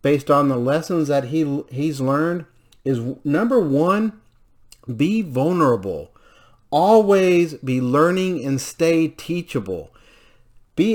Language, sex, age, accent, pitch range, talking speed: English, male, 40-59, American, 130-170 Hz, 110 wpm